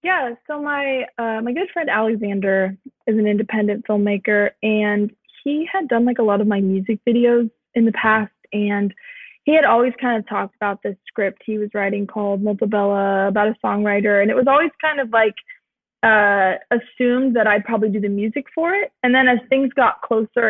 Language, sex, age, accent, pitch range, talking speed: English, female, 20-39, American, 215-255 Hz, 195 wpm